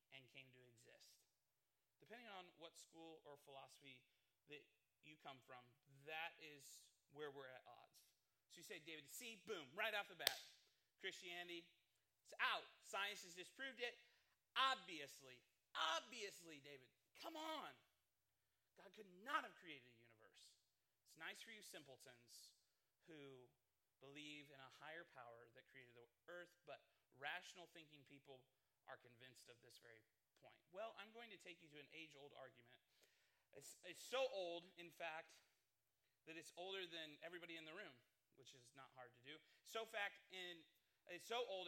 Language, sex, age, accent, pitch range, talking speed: English, male, 30-49, American, 135-185 Hz, 160 wpm